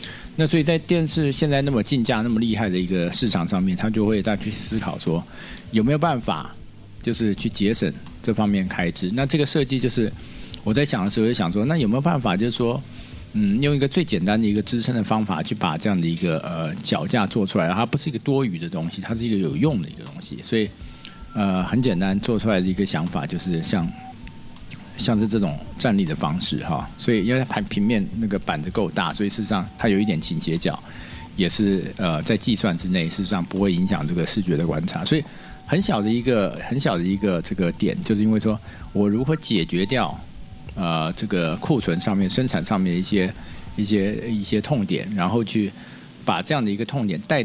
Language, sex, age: Chinese, male, 50-69